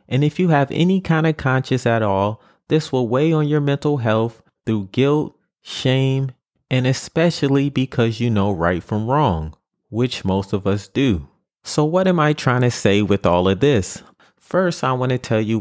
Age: 30-49